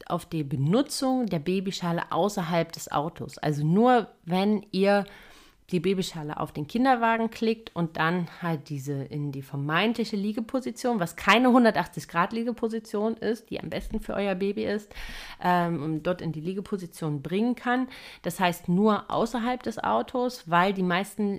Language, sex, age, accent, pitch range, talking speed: German, female, 30-49, German, 155-215 Hz, 150 wpm